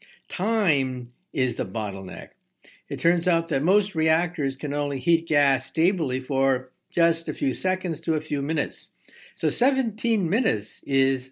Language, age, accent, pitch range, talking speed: English, 60-79, American, 125-175 Hz, 150 wpm